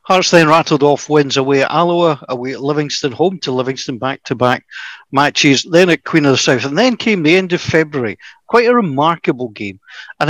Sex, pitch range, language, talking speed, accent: male, 135-175 Hz, English, 210 wpm, British